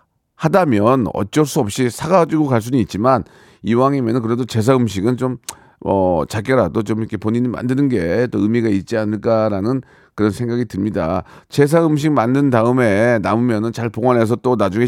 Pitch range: 100-145 Hz